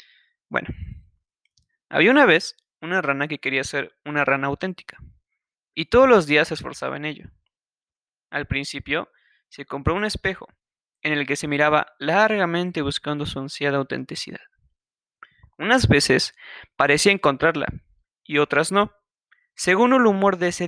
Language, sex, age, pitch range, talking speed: Spanish, male, 20-39, 145-195 Hz, 140 wpm